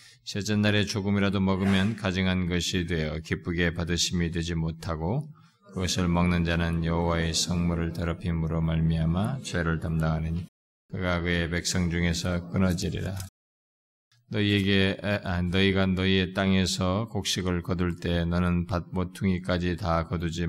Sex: male